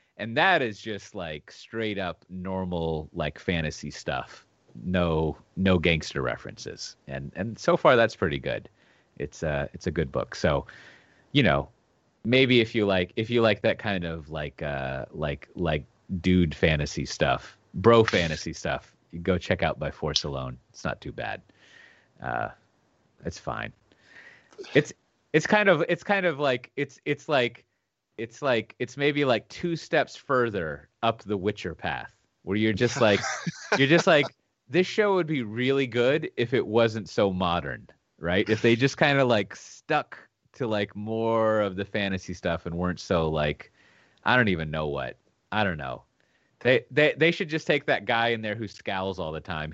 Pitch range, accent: 85-115 Hz, American